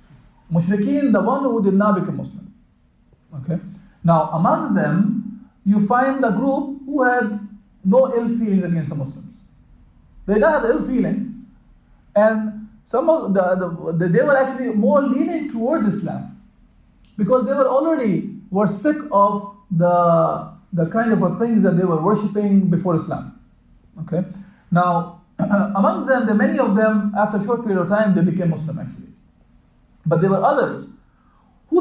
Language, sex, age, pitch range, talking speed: English, male, 50-69, 170-220 Hz, 155 wpm